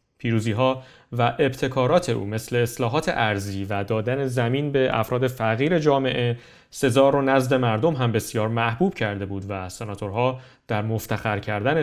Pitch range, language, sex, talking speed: 115-145 Hz, Persian, male, 145 wpm